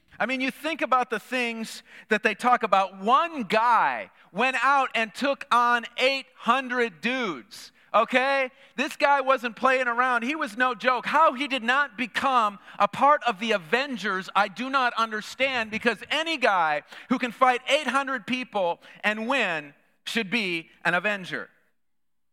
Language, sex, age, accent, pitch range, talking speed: English, male, 40-59, American, 210-260 Hz, 155 wpm